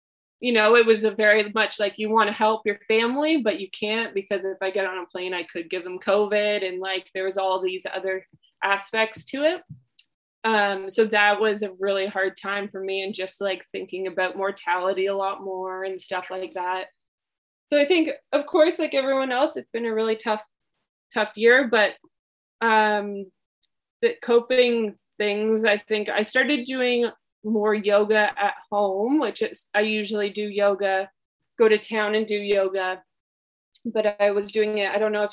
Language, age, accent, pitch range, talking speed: English, 20-39, American, 195-245 Hz, 190 wpm